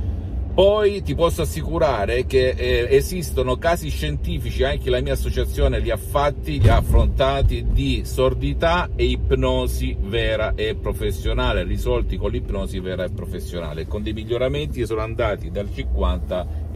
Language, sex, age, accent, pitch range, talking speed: Italian, male, 50-69, native, 80-105 Hz, 140 wpm